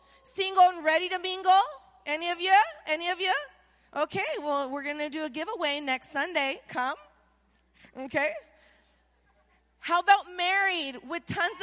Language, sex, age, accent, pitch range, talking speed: English, female, 20-39, American, 265-350 Hz, 140 wpm